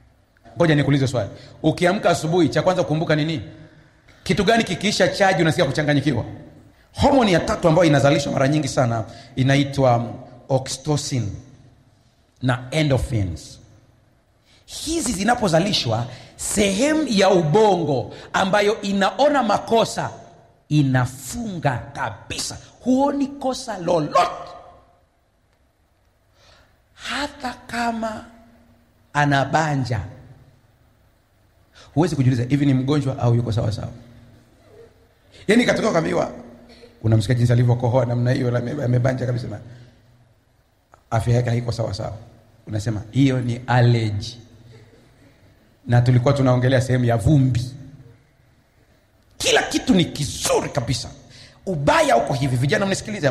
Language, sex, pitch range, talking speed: Swahili, male, 115-160 Hz, 100 wpm